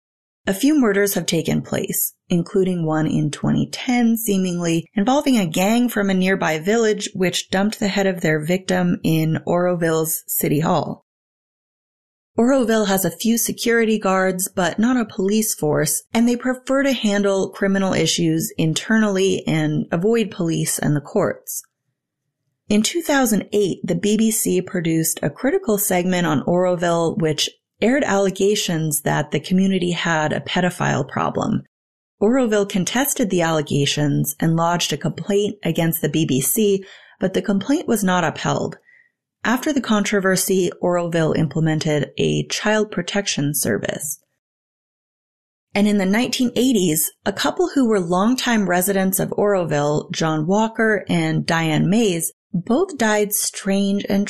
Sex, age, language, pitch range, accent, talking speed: female, 30-49, English, 165-215 Hz, American, 135 wpm